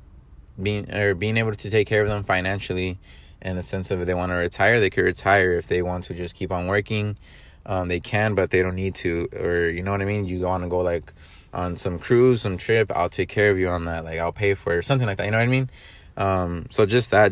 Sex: male